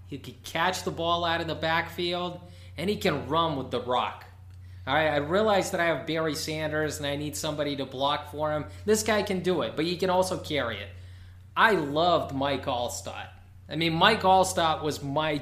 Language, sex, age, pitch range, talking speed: English, male, 20-39, 115-160 Hz, 205 wpm